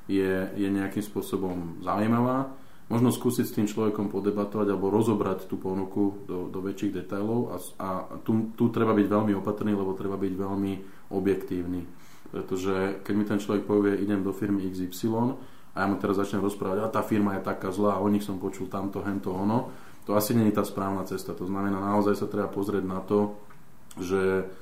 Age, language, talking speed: 20-39, Slovak, 190 wpm